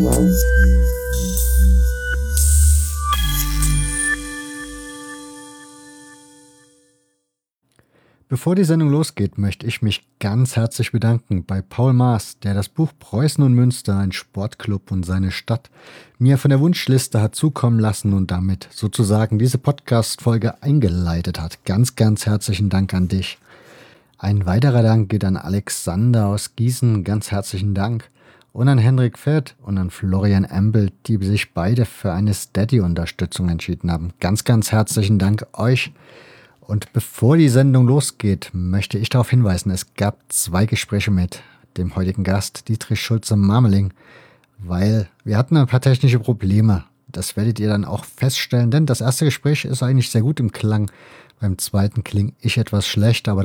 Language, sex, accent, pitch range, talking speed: German, male, German, 95-125 Hz, 140 wpm